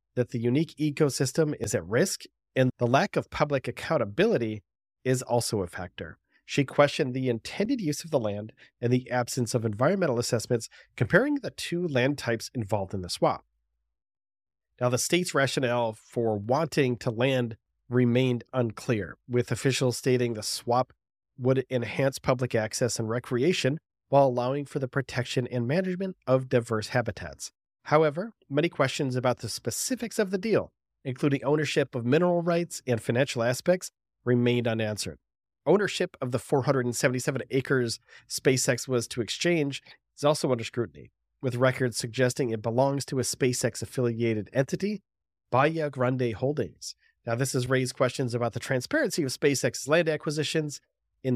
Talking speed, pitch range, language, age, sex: 150 wpm, 120-145 Hz, English, 30-49, male